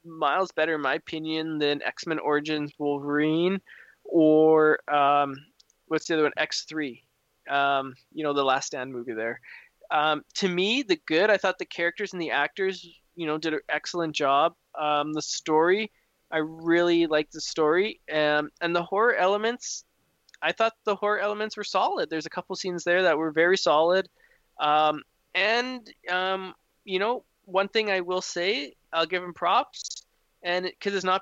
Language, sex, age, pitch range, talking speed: English, male, 20-39, 155-185 Hz, 175 wpm